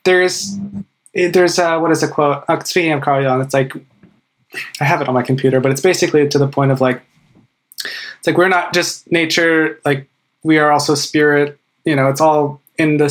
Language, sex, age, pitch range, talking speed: English, male, 20-39, 145-175 Hz, 200 wpm